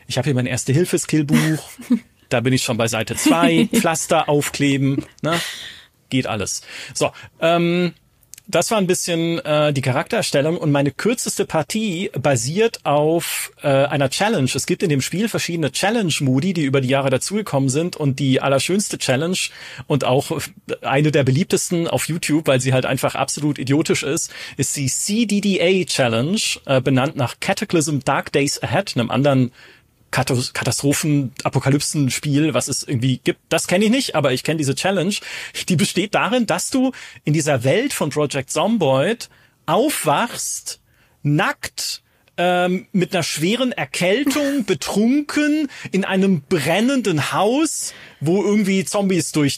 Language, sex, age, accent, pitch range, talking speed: German, male, 40-59, German, 135-195 Hz, 145 wpm